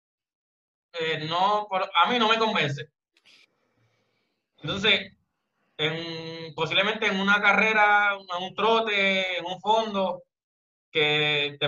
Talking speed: 90 wpm